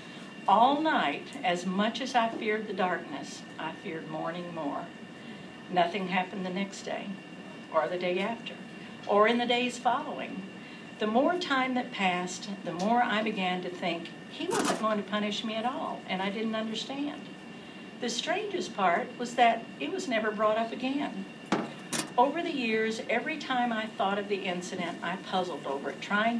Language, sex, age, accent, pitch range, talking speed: English, female, 60-79, American, 185-245 Hz, 175 wpm